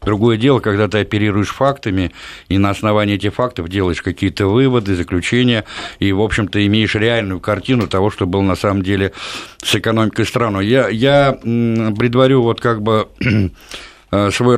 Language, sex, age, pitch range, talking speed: Russian, male, 50-69, 100-120 Hz, 150 wpm